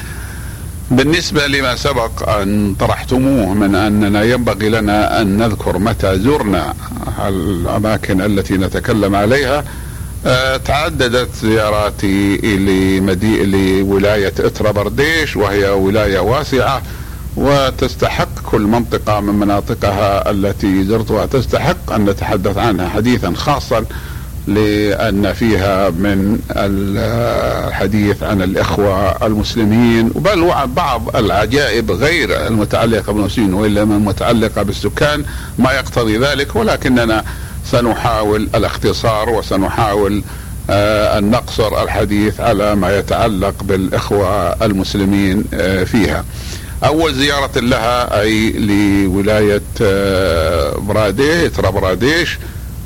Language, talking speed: Arabic, 90 wpm